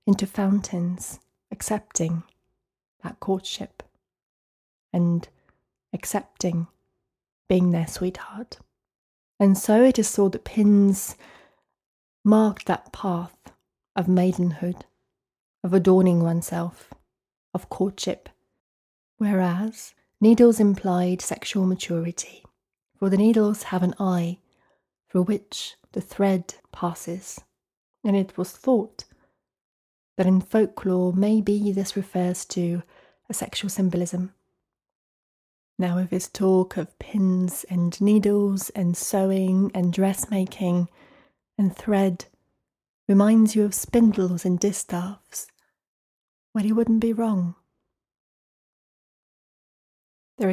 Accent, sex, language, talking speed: British, female, English, 100 wpm